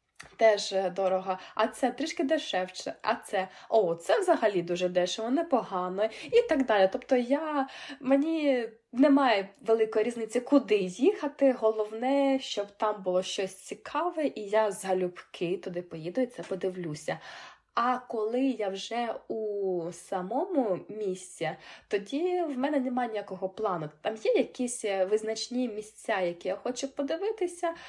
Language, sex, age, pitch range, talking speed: Ukrainian, female, 20-39, 185-255 Hz, 130 wpm